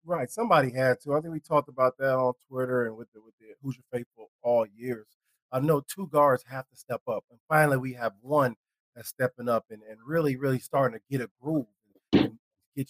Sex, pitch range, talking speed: male, 125-145 Hz, 230 wpm